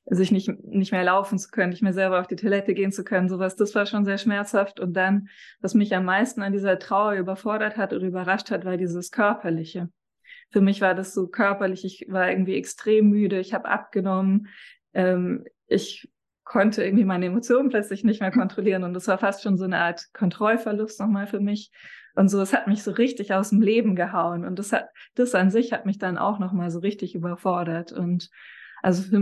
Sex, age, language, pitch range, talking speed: female, 20-39, German, 185-210 Hz, 210 wpm